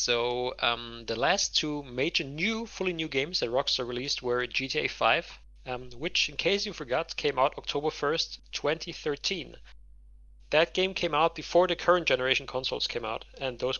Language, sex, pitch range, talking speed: English, male, 120-150 Hz, 175 wpm